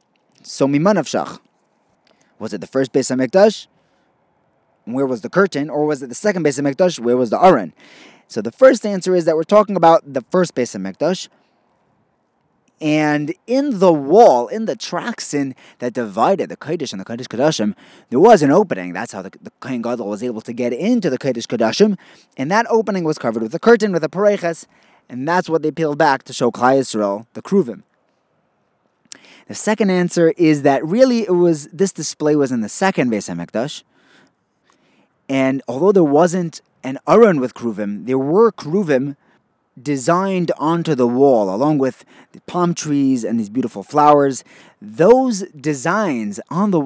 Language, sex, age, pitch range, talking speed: English, male, 30-49, 130-185 Hz, 180 wpm